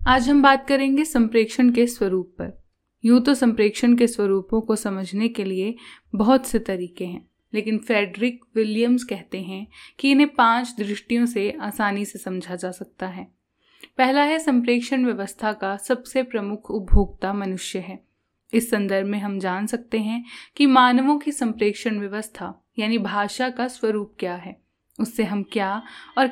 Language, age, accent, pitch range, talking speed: Hindi, 10-29, native, 195-250 Hz, 155 wpm